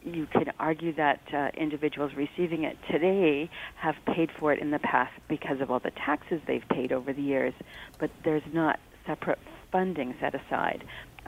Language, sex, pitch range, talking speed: English, female, 140-160 Hz, 180 wpm